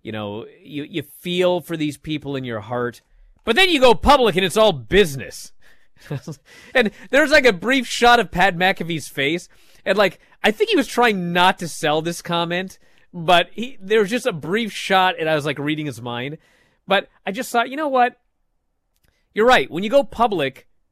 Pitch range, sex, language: 160-245 Hz, male, English